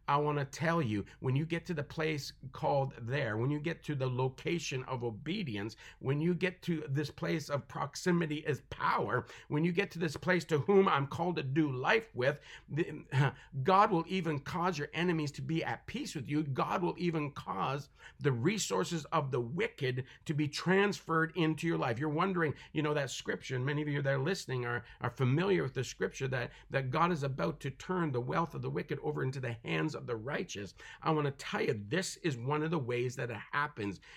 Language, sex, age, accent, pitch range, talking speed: English, male, 50-69, American, 135-170 Hz, 215 wpm